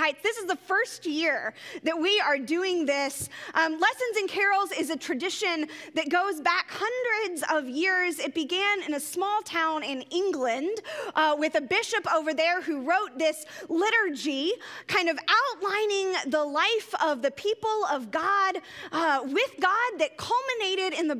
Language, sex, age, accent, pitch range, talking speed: English, female, 30-49, American, 295-385 Hz, 165 wpm